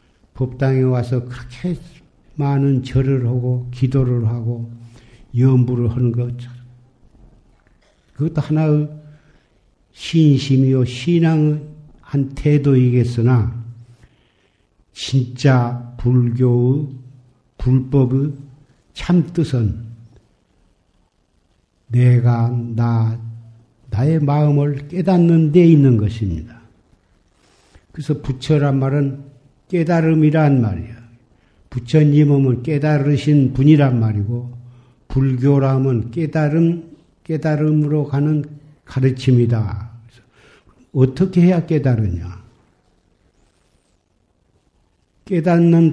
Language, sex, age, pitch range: Korean, male, 60-79, 120-150 Hz